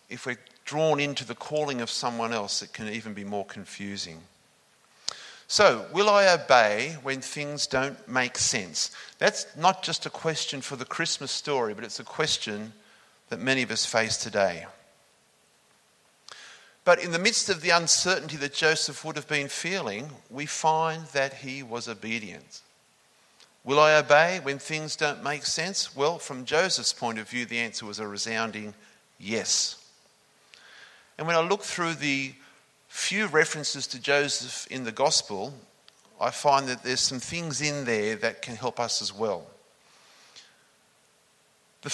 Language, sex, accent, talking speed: English, male, Australian, 155 wpm